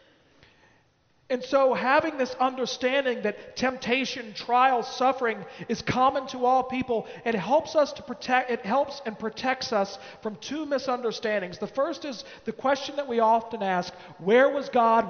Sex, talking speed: male, 155 wpm